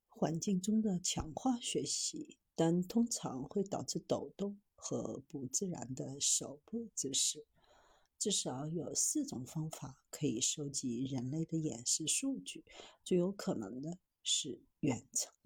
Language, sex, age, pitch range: Chinese, female, 50-69, 155-230 Hz